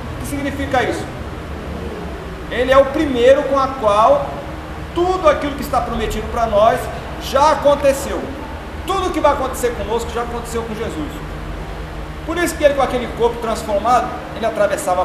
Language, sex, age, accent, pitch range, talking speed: Portuguese, male, 40-59, Brazilian, 170-275 Hz, 160 wpm